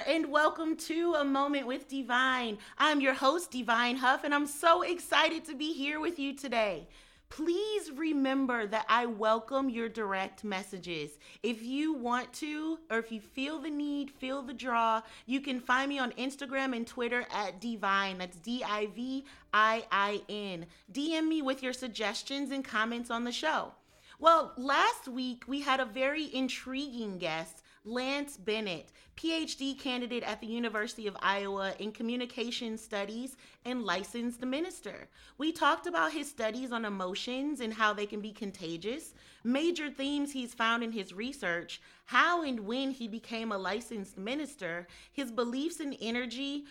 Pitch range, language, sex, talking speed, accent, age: 220-275 Hz, English, female, 155 wpm, American, 30-49